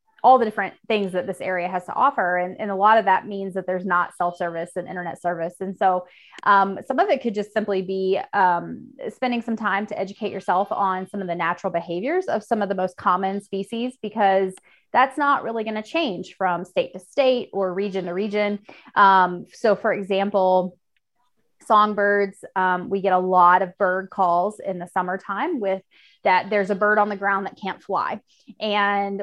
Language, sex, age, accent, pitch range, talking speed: English, female, 20-39, American, 185-215 Hz, 200 wpm